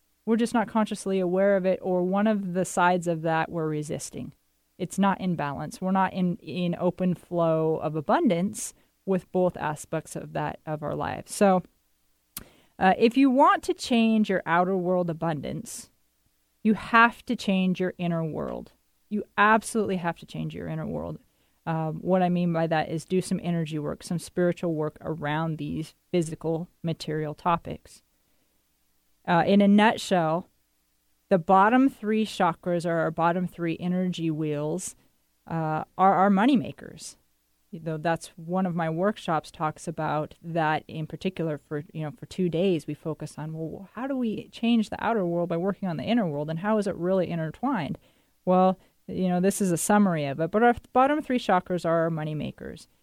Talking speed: 180 wpm